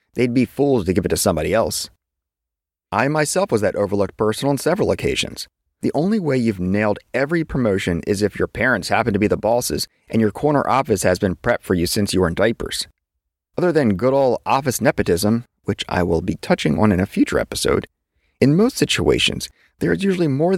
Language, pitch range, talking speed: English, 95-145 Hz, 205 wpm